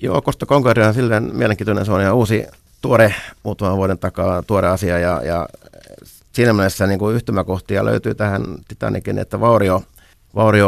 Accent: native